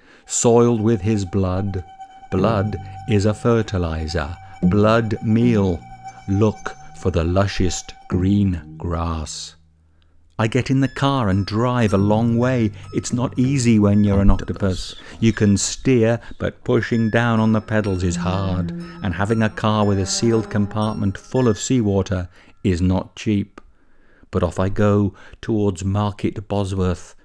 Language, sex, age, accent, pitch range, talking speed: English, male, 50-69, British, 95-120 Hz, 145 wpm